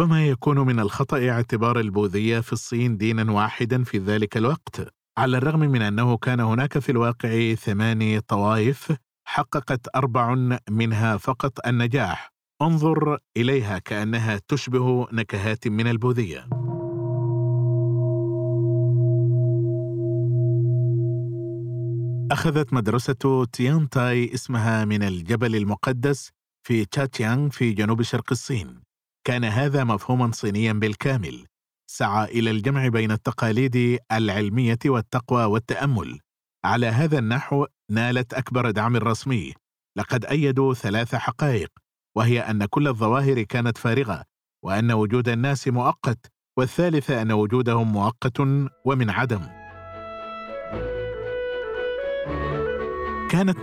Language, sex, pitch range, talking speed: Arabic, male, 110-135 Hz, 100 wpm